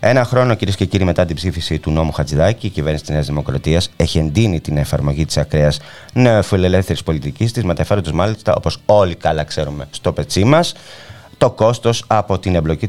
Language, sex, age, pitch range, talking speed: Greek, male, 30-49, 80-115 Hz, 185 wpm